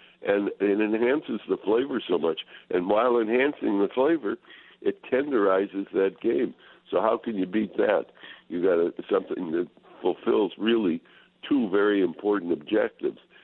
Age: 60-79